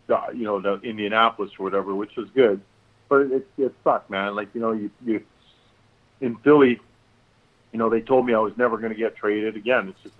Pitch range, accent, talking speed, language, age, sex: 105-125 Hz, American, 220 wpm, English, 40-59, male